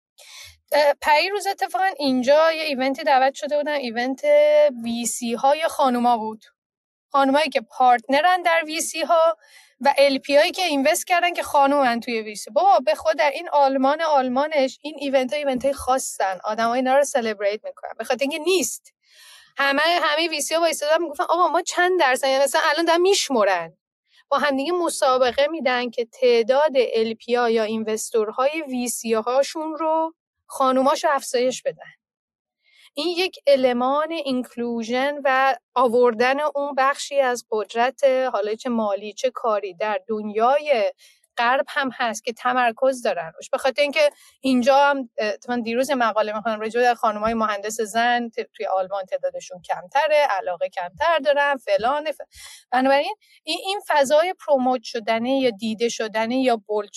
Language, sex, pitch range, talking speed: Persian, female, 235-295 Hz, 145 wpm